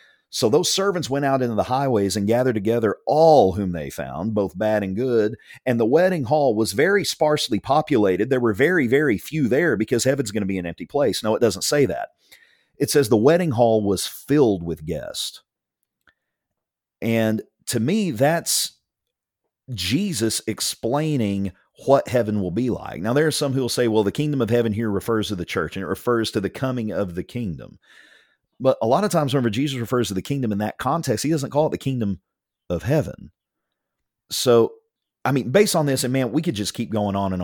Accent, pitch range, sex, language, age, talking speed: American, 100-135 Hz, male, English, 40-59, 205 wpm